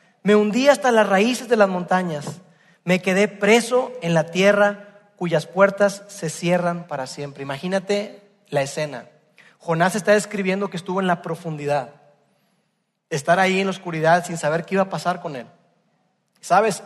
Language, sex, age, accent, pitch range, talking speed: Spanish, male, 40-59, Mexican, 175-215 Hz, 160 wpm